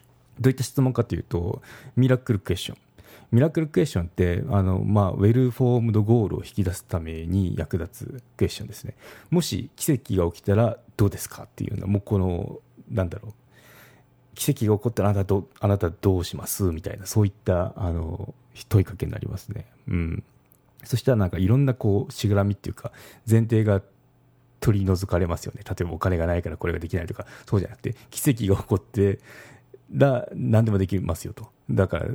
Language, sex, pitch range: Japanese, male, 95-125 Hz